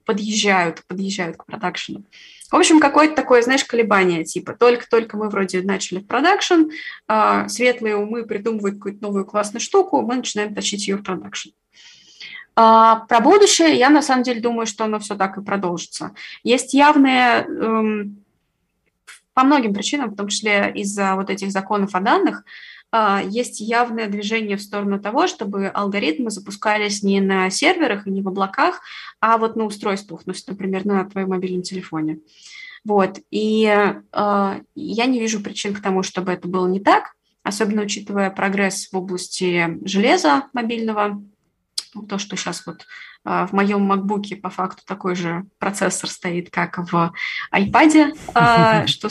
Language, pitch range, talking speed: Russian, 190-235 Hz, 150 wpm